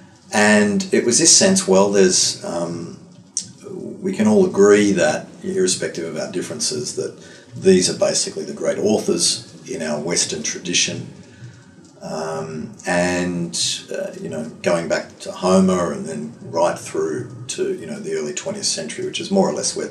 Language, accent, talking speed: English, Australian, 165 wpm